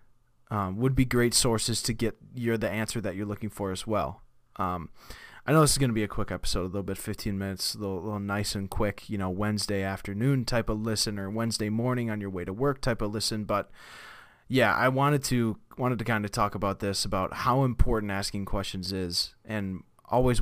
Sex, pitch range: male, 100-120 Hz